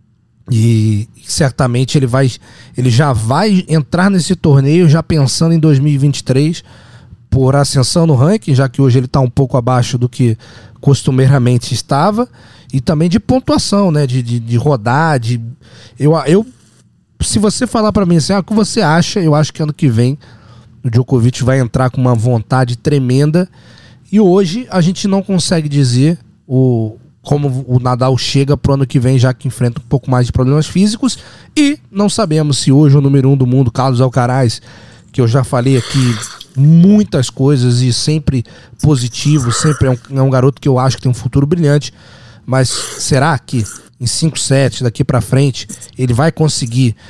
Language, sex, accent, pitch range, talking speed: Portuguese, male, Brazilian, 125-155 Hz, 180 wpm